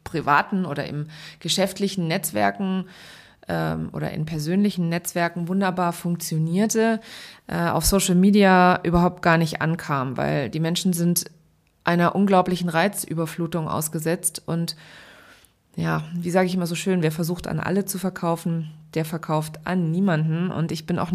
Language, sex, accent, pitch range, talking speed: German, female, German, 160-190 Hz, 140 wpm